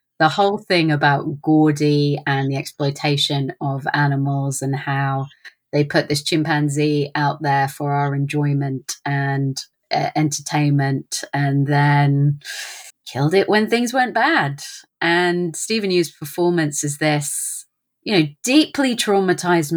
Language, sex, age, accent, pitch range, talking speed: English, female, 30-49, British, 145-160 Hz, 130 wpm